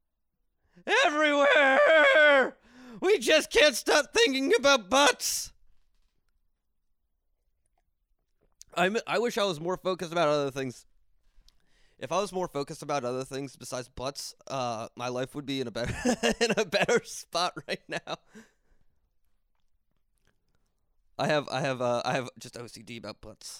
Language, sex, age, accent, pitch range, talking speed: English, male, 20-39, American, 120-200 Hz, 135 wpm